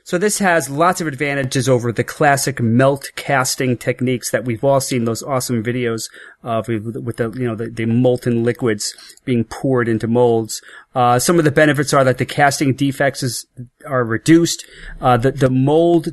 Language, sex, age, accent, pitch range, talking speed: English, male, 30-49, American, 120-150 Hz, 180 wpm